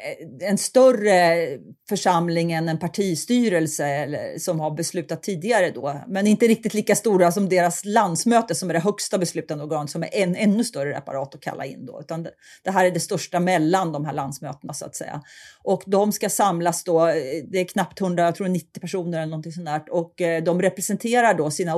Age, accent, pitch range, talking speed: 40-59, native, 165-205 Hz, 185 wpm